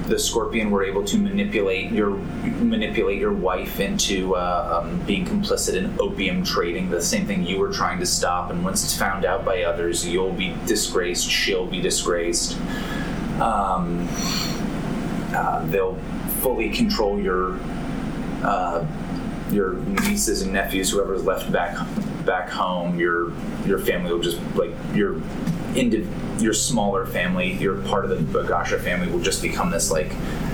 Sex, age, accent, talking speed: male, 30-49, American, 150 wpm